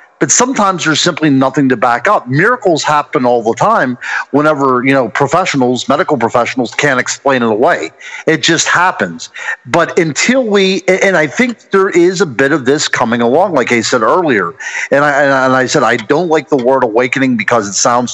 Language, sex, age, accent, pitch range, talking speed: English, male, 50-69, American, 125-165 Hz, 190 wpm